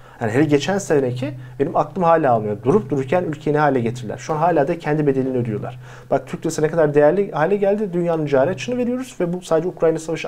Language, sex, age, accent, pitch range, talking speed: Turkish, male, 40-59, native, 125-180 Hz, 205 wpm